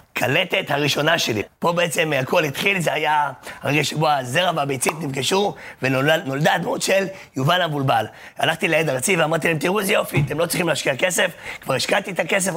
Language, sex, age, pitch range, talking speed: Hebrew, male, 30-49, 150-190 Hz, 170 wpm